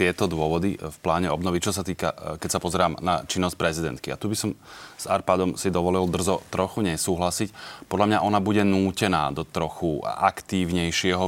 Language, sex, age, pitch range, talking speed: Slovak, male, 30-49, 85-100 Hz, 175 wpm